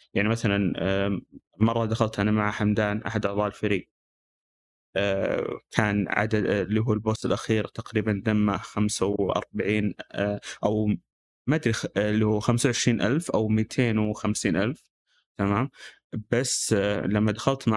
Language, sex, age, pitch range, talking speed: Arabic, male, 20-39, 105-120 Hz, 130 wpm